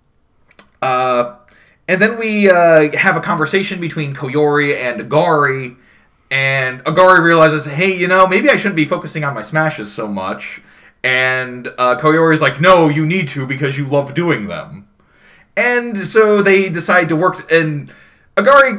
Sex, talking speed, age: male, 155 wpm, 30-49